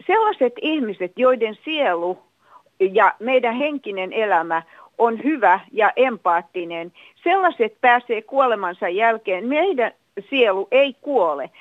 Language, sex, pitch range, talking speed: Finnish, female, 195-275 Hz, 105 wpm